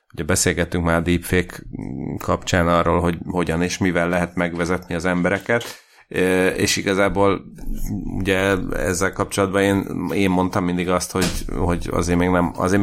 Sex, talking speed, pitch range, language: male, 145 wpm, 90-100 Hz, Hungarian